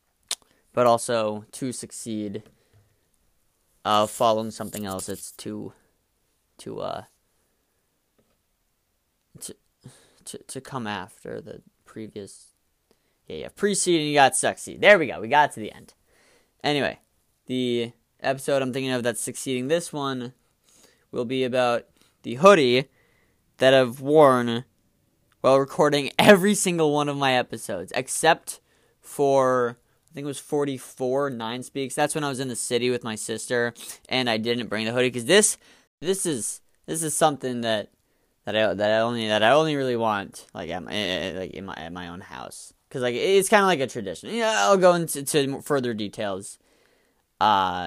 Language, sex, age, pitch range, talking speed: English, male, 20-39, 110-140 Hz, 165 wpm